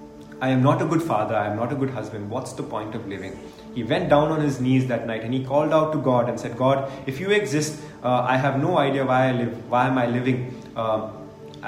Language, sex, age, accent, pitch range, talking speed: English, male, 30-49, Indian, 120-145 Hz, 255 wpm